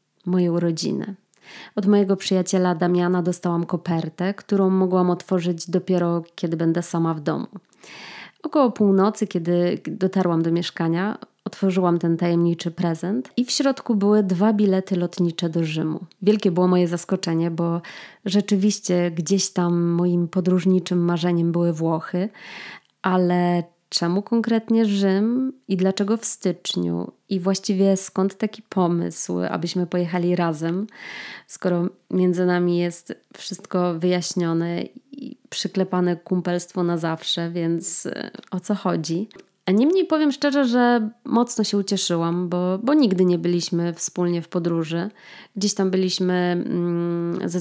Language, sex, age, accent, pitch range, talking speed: Polish, female, 20-39, native, 175-205 Hz, 125 wpm